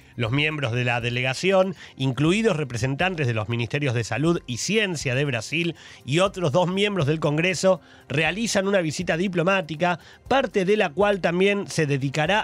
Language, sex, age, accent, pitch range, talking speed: Spanish, male, 30-49, Argentinian, 135-180 Hz, 160 wpm